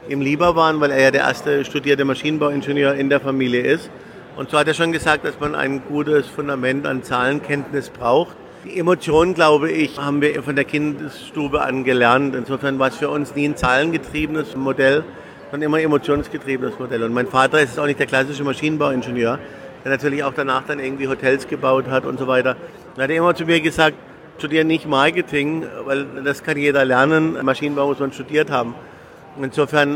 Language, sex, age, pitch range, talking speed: German, male, 50-69, 130-150 Hz, 190 wpm